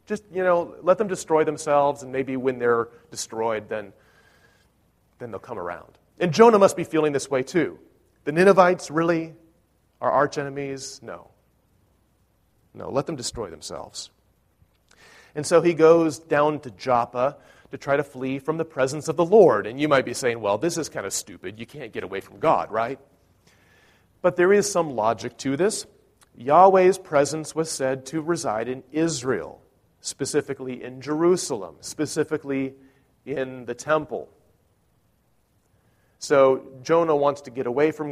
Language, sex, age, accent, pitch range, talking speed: English, male, 40-59, American, 130-160 Hz, 160 wpm